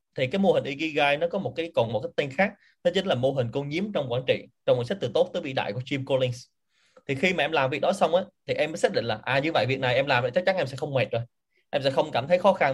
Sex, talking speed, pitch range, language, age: male, 335 wpm, 130-185 Hz, Vietnamese, 20-39